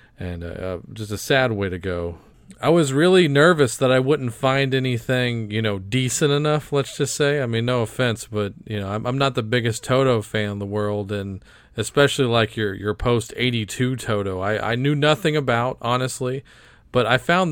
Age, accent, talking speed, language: 40-59, American, 200 wpm, English